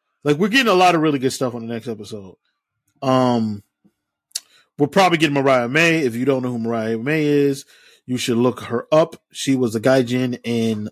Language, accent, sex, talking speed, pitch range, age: English, American, male, 205 wpm, 115-150 Hz, 20-39